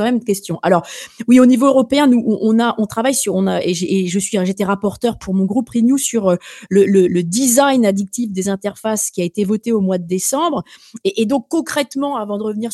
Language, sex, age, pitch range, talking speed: French, female, 30-49, 200-265 Hz, 225 wpm